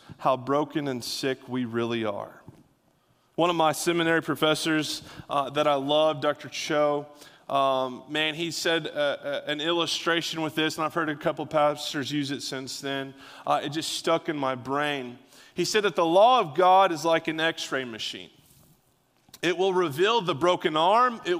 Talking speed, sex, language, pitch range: 180 wpm, male, English, 155-205 Hz